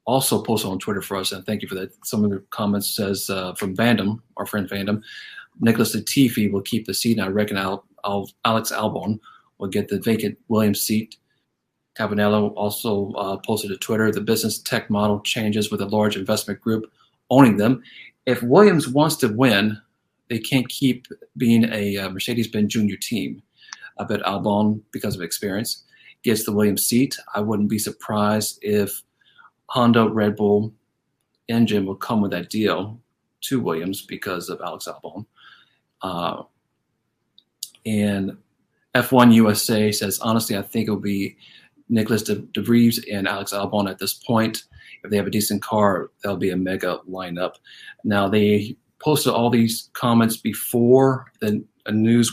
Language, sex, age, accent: English, male, 40-59, American